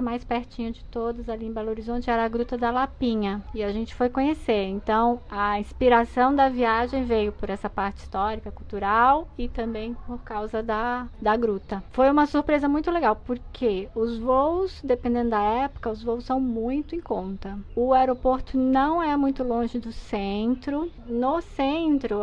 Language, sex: Portuguese, female